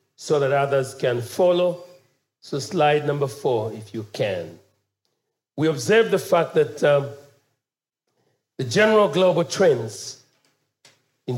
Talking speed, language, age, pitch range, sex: 120 wpm, English, 50-69, 135-195 Hz, male